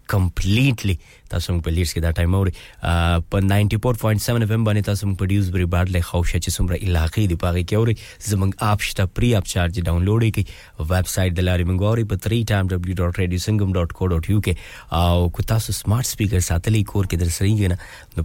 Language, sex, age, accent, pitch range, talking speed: English, male, 30-49, Indian, 90-115 Hz, 175 wpm